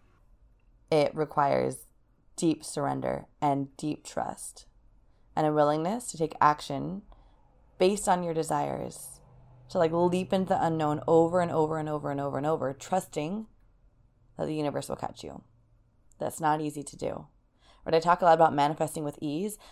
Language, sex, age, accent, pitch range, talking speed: English, female, 20-39, American, 130-170 Hz, 160 wpm